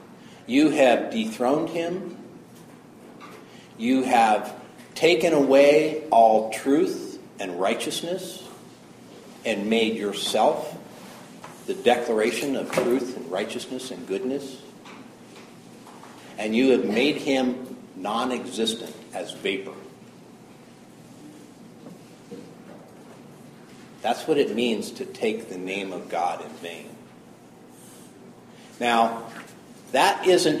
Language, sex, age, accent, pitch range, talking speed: English, male, 50-69, American, 105-140 Hz, 90 wpm